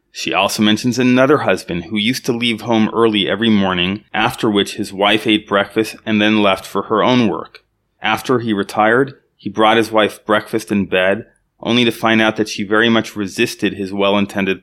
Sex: male